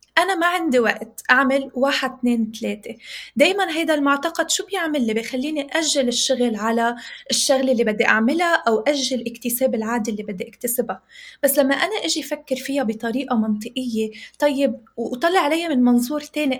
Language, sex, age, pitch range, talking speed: Arabic, female, 20-39, 230-290 Hz, 155 wpm